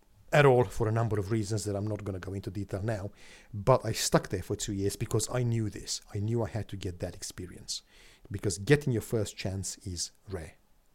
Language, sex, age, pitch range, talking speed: English, male, 50-69, 95-125 Hz, 230 wpm